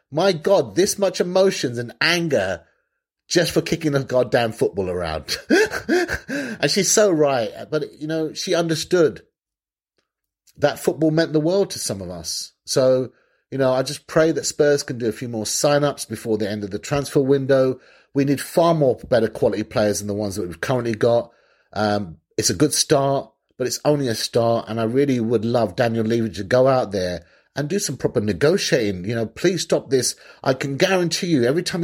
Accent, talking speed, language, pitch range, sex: British, 195 wpm, English, 120-175 Hz, male